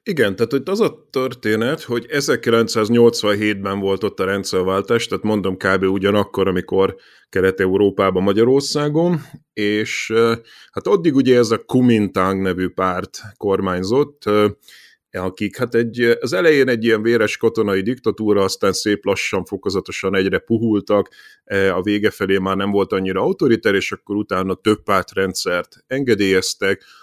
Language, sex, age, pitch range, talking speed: Hungarian, male, 30-49, 95-115 Hz, 130 wpm